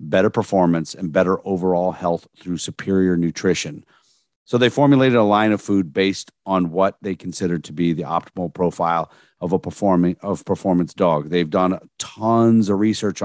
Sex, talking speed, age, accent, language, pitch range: male, 170 wpm, 40-59, American, English, 90-110 Hz